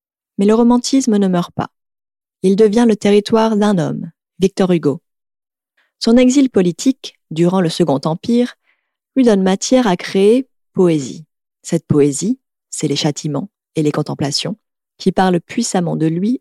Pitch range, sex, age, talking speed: 175-235 Hz, female, 30-49, 145 wpm